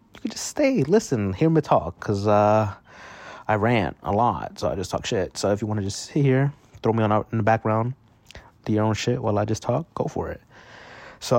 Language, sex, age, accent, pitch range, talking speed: English, male, 30-49, American, 95-115 Hz, 230 wpm